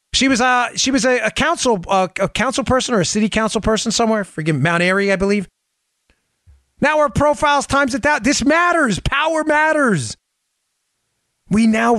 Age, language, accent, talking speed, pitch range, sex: 30-49, English, American, 175 wpm, 145-225 Hz, male